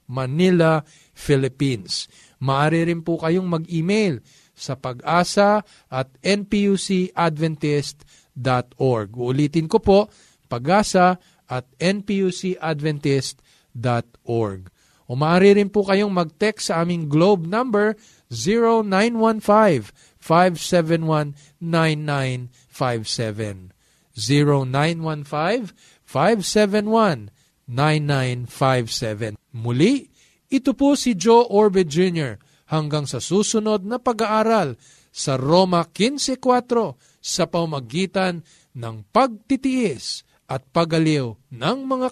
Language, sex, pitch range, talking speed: Filipino, male, 130-205 Hz, 75 wpm